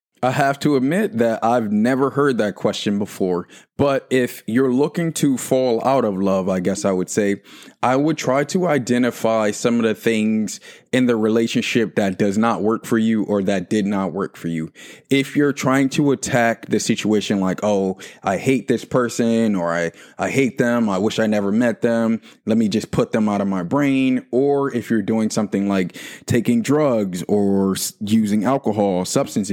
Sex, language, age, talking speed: male, English, 20-39, 195 wpm